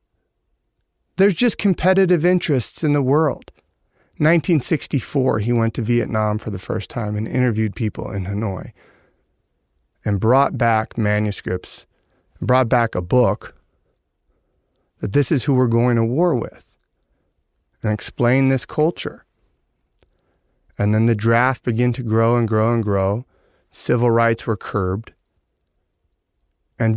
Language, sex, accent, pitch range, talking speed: English, male, American, 105-135 Hz, 130 wpm